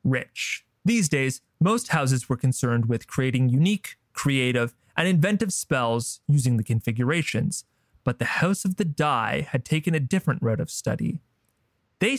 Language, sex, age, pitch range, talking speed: English, male, 30-49, 125-175 Hz, 155 wpm